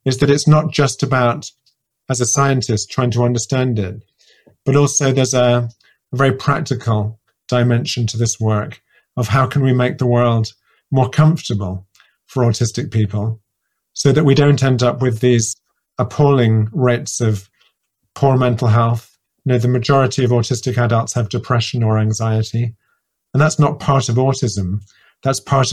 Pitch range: 115-135 Hz